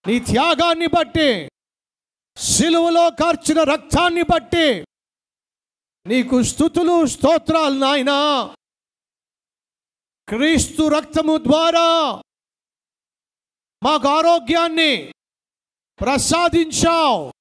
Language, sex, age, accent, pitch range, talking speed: Telugu, male, 50-69, native, 290-335 Hz, 60 wpm